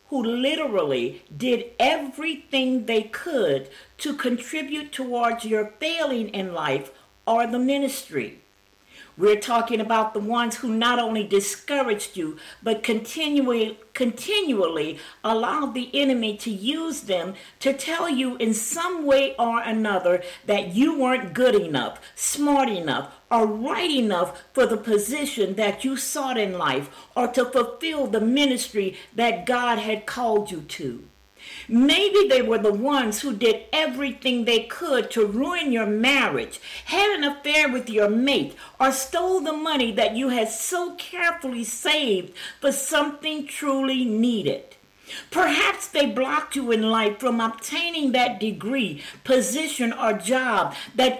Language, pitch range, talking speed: English, 220-285 Hz, 140 wpm